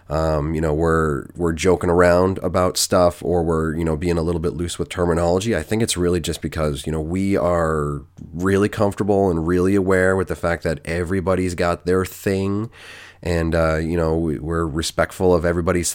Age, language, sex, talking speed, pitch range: 30-49, English, male, 190 wpm, 80-95 Hz